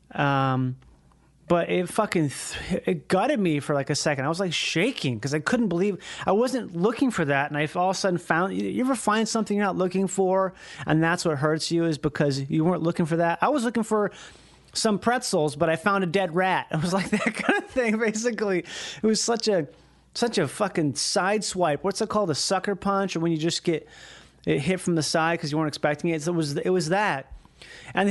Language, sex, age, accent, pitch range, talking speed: English, male, 30-49, American, 150-195 Hz, 235 wpm